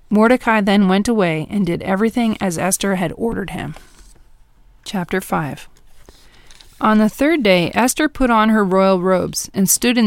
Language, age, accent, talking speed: English, 40-59, American, 160 wpm